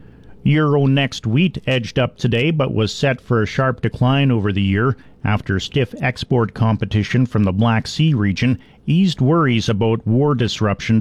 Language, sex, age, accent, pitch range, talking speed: English, male, 50-69, American, 105-125 Hz, 165 wpm